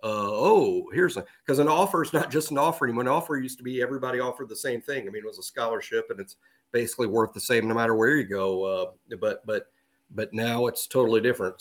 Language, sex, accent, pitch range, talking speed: English, male, American, 110-140 Hz, 240 wpm